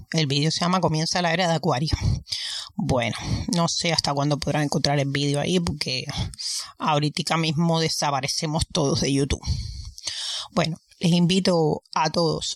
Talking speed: 150 wpm